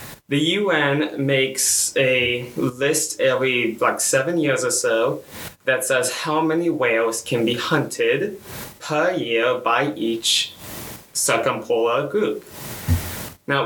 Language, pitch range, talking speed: English, 110-140 Hz, 115 wpm